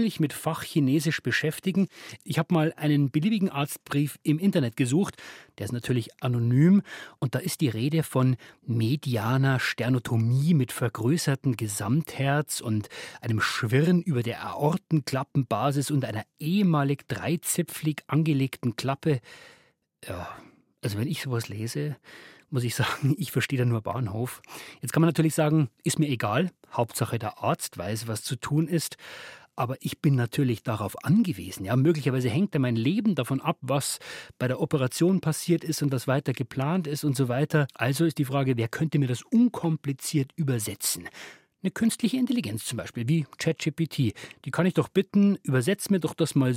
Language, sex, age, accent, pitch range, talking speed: German, male, 30-49, German, 125-160 Hz, 155 wpm